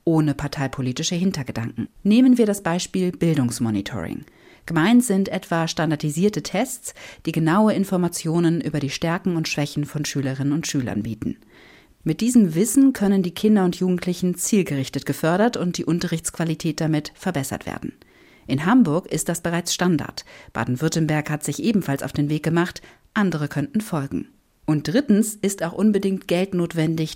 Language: German